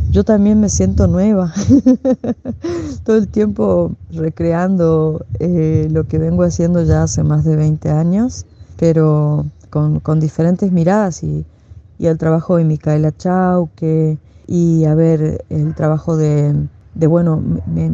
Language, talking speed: Spanish, 135 wpm